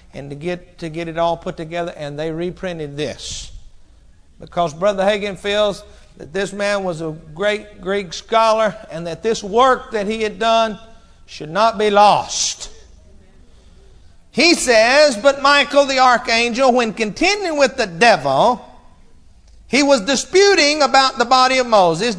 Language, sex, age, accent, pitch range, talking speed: English, male, 50-69, American, 205-285 Hz, 150 wpm